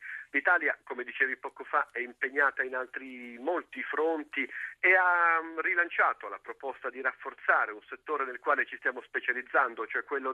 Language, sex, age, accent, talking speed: Italian, male, 50-69, native, 155 wpm